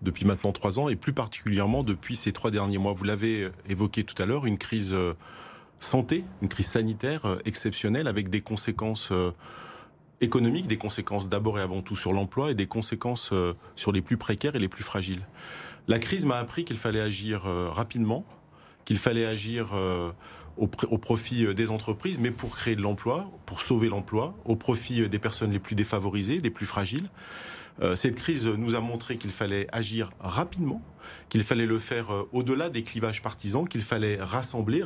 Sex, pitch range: male, 100-120 Hz